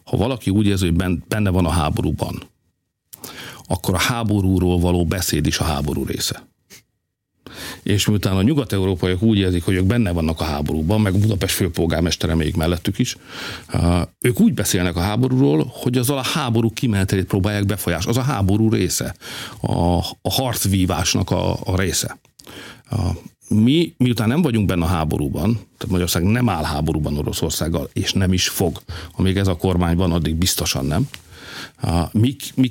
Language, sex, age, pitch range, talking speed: Hungarian, male, 50-69, 90-115 Hz, 155 wpm